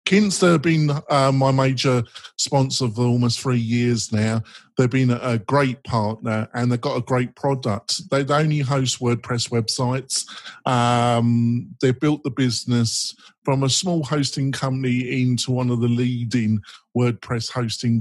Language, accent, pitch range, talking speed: English, British, 115-140 Hz, 150 wpm